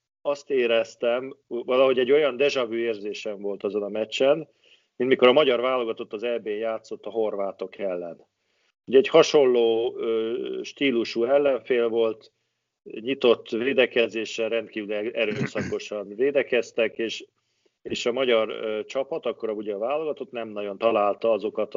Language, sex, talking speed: Hungarian, male, 120 wpm